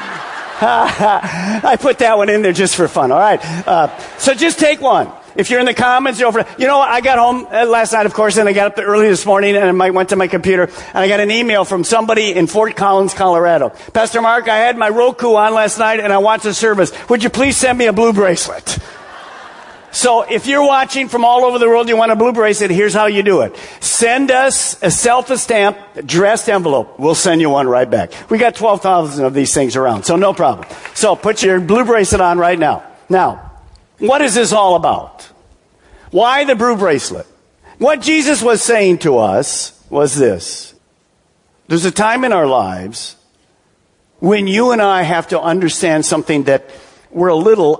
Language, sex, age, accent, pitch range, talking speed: English, male, 50-69, American, 185-240 Hz, 205 wpm